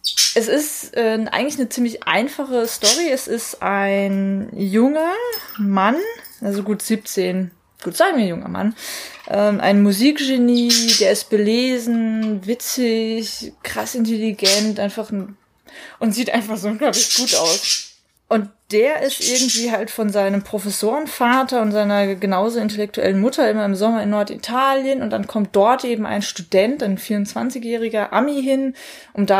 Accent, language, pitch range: German, German, 210-250 Hz